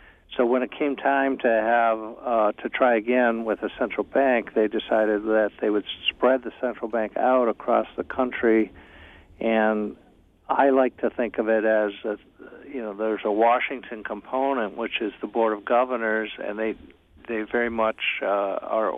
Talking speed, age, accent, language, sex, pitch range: 175 wpm, 50-69, American, English, male, 105-120 Hz